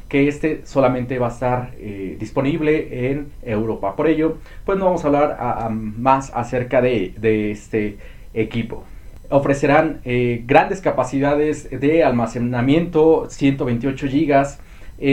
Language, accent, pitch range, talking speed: Spanish, Mexican, 120-150 Hz, 120 wpm